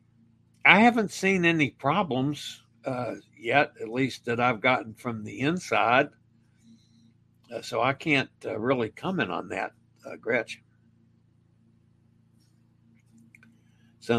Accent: American